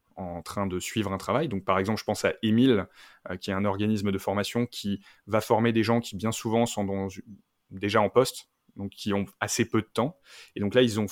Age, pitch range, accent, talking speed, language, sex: 20-39, 100-115 Hz, French, 245 wpm, French, male